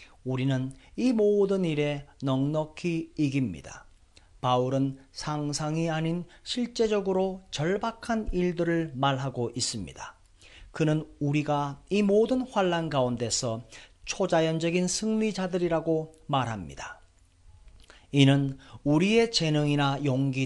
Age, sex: 40-59, male